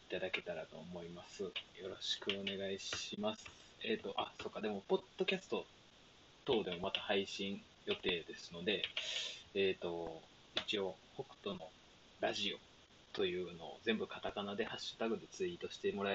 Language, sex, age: Japanese, male, 20-39